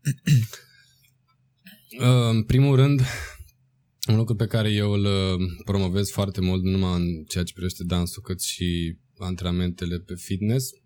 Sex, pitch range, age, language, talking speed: male, 100-130 Hz, 20-39, Romanian, 125 wpm